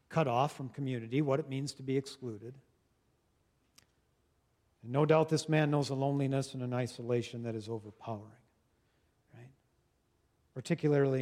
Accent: American